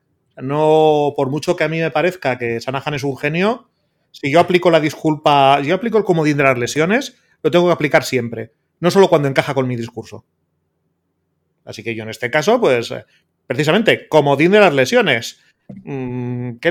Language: Spanish